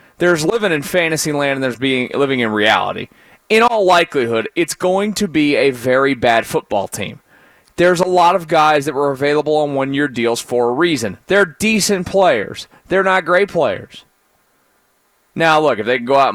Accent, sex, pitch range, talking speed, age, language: American, male, 130-175 Hz, 185 wpm, 30-49, English